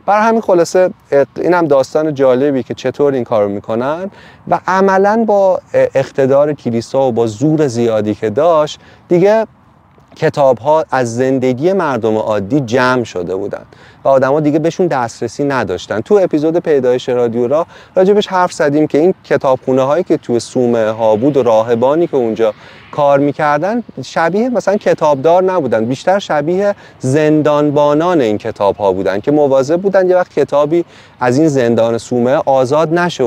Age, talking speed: 30-49, 155 wpm